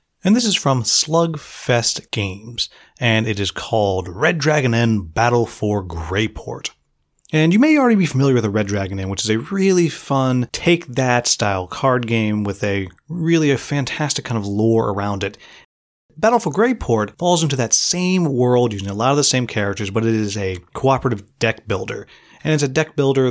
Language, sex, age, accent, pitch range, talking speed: English, male, 30-49, American, 105-150 Hz, 185 wpm